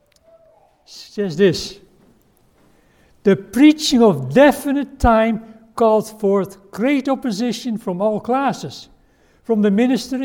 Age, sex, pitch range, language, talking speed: 60-79, male, 175-240 Hz, English, 100 wpm